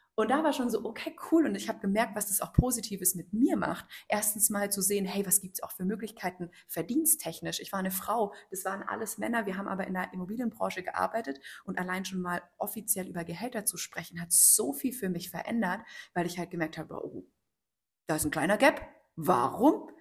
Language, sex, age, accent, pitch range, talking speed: German, female, 30-49, German, 175-215 Hz, 215 wpm